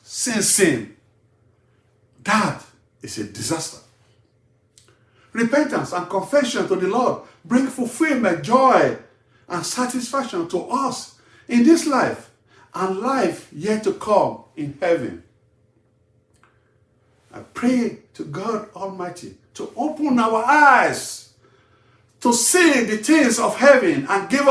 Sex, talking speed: male, 115 wpm